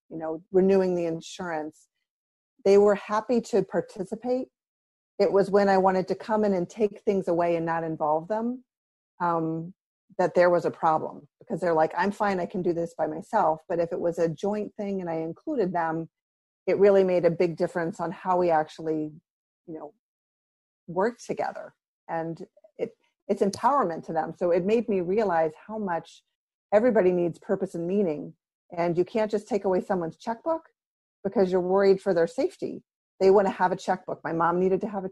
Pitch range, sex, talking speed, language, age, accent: 170-210 Hz, female, 190 wpm, English, 40-59, American